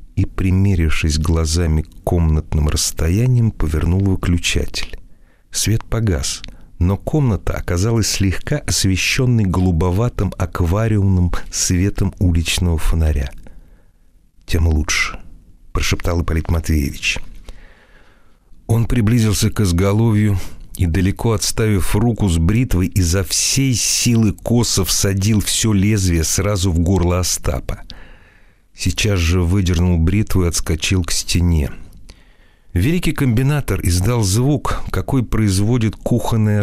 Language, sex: Russian, male